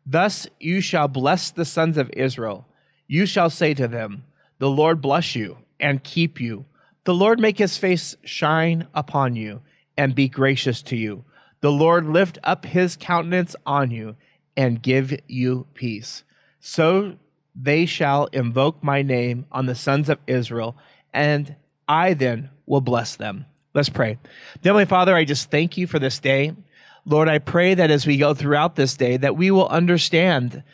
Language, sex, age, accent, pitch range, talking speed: English, male, 30-49, American, 135-170 Hz, 170 wpm